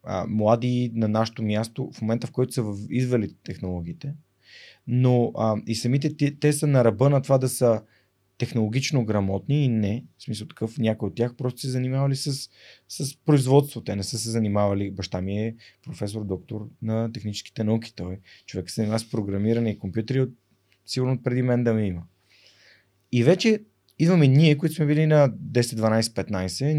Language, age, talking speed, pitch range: Bulgarian, 30-49, 180 wpm, 105-130 Hz